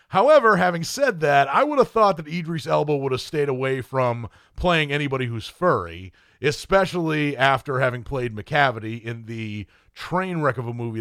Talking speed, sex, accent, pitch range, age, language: 175 wpm, male, American, 120-160 Hz, 40-59, English